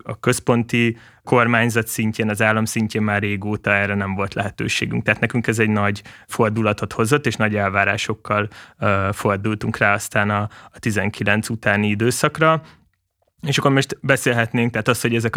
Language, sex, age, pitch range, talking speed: Hungarian, male, 20-39, 105-120 Hz, 155 wpm